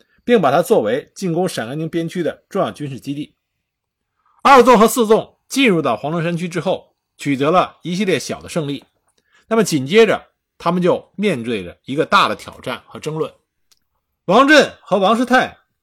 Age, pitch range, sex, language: 50-69, 170-240 Hz, male, Chinese